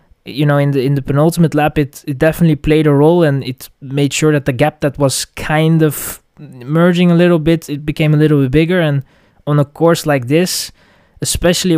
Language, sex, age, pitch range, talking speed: English, male, 20-39, 135-155 Hz, 215 wpm